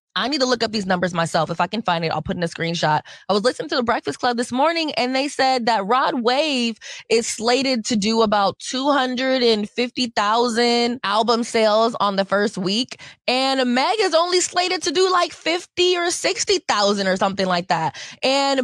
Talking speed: 195 wpm